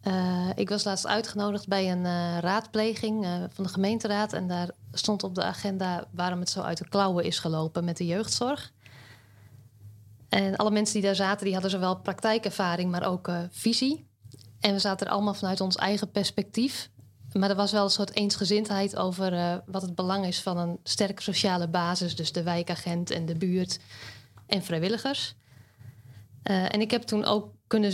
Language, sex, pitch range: Dutch, female, 170-205 Hz